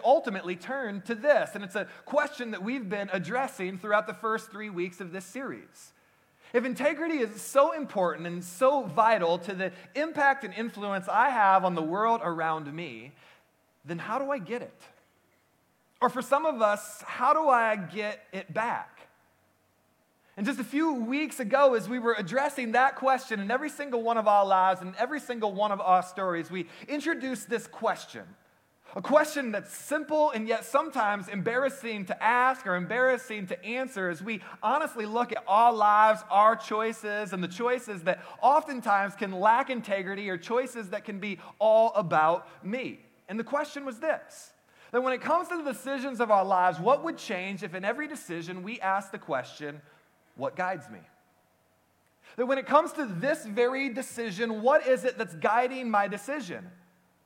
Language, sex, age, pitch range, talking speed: English, male, 30-49, 195-260 Hz, 180 wpm